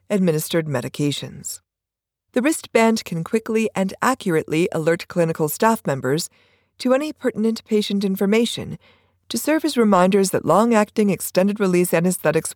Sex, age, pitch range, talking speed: female, 50-69, 155-225 Hz, 120 wpm